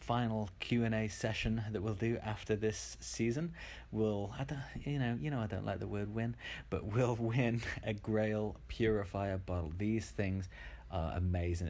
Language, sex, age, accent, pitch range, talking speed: English, male, 30-49, British, 90-110 Hz, 165 wpm